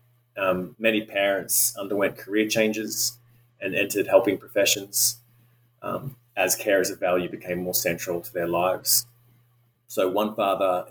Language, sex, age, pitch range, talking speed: English, male, 20-39, 95-120 Hz, 140 wpm